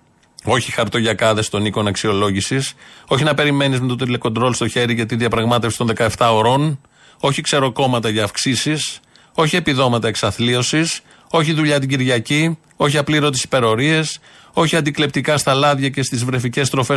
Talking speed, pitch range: 145 wpm, 115-145 Hz